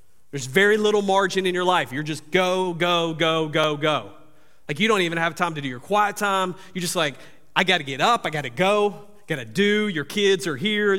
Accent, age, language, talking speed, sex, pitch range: American, 30-49, English, 225 wpm, male, 130-205 Hz